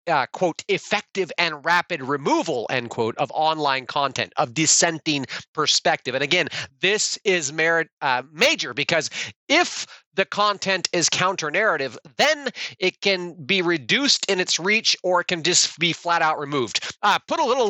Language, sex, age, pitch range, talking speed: English, male, 30-49, 150-195 Hz, 155 wpm